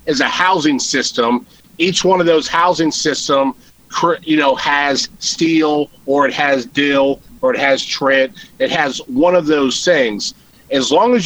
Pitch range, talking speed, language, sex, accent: 135-190 Hz, 165 wpm, English, male, American